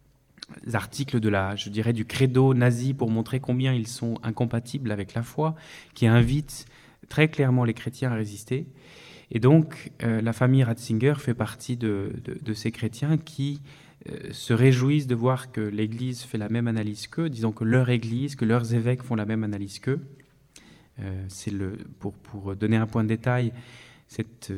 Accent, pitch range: French, 110-130 Hz